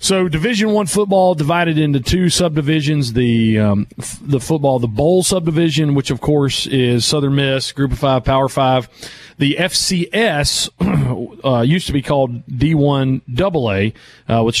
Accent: American